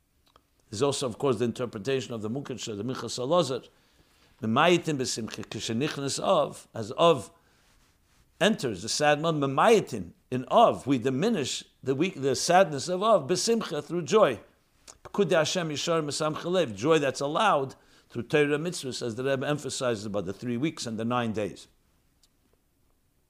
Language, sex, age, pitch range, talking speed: English, male, 60-79, 125-160 Hz, 135 wpm